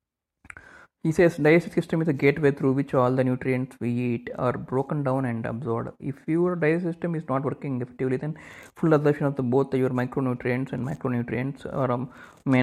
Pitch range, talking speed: 120-145 Hz, 190 wpm